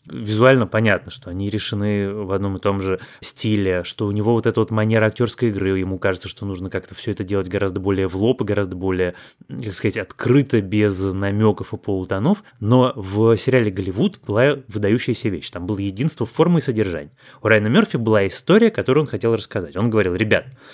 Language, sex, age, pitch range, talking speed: Russian, male, 20-39, 100-125 Hz, 195 wpm